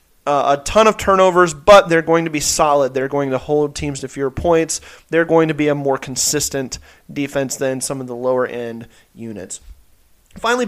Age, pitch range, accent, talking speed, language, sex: 30-49, 140-170 Hz, American, 195 wpm, English, male